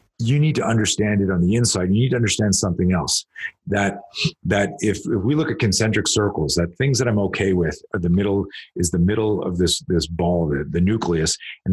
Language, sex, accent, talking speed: English, male, American, 220 wpm